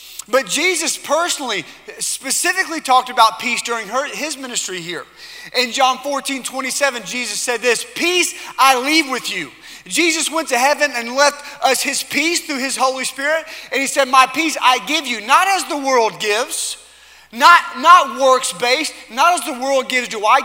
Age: 30-49